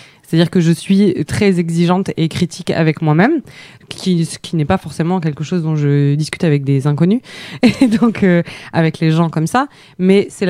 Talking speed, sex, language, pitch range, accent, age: 195 wpm, female, French, 155-190 Hz, French, 20-39